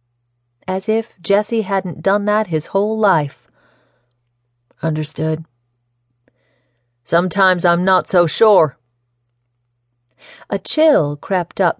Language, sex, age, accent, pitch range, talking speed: English, female, 40-59, American, 120-195 Hz, 95 wpm